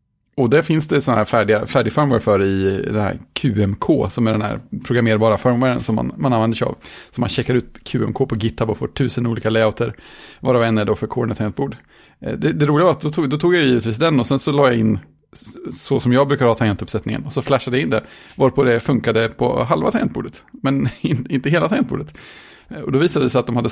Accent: Norwegian